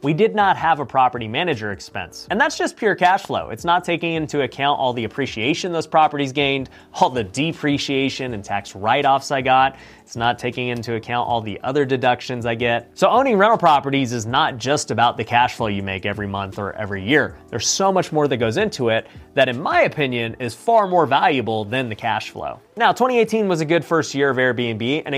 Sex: male